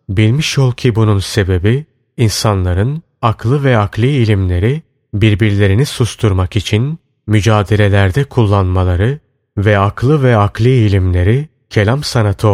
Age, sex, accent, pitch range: 30-49, male, native, 100-130 Hz